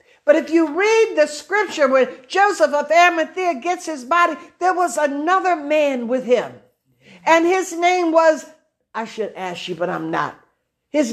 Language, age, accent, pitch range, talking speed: English, 60-79, American, 270-355 Hz, 165 wpm